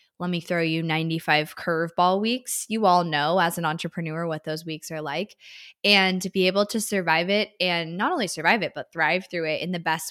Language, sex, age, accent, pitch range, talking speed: English, female, 20-39, American, 165-200 Hz, 220 wpm